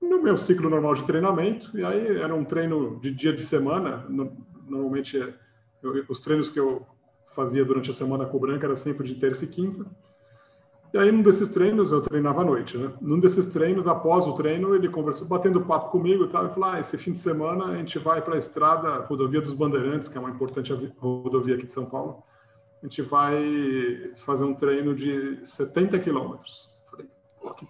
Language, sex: Portuguese, male